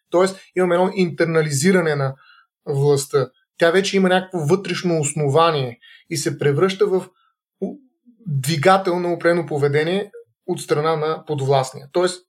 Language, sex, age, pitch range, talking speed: Bulgarian, male, 30-49, 145-185 Hz, 120 wpm